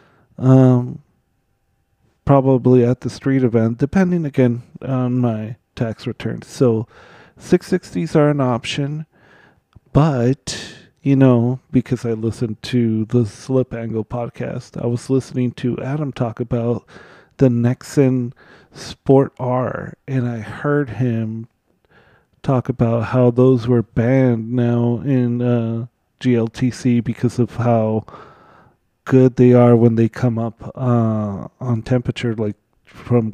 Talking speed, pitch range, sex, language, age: 120 wpm, 120-135 Hz, male, English, 30-49